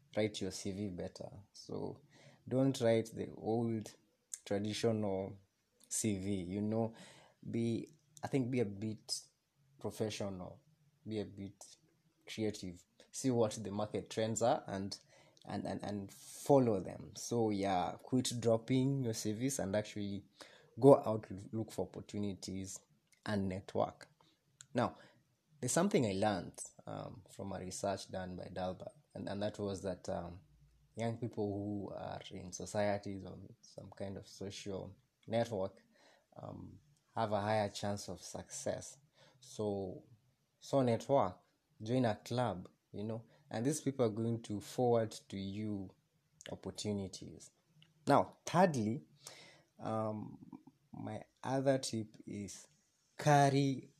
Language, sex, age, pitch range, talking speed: English, male, 20-39, 100-135 Hz, 125 wpm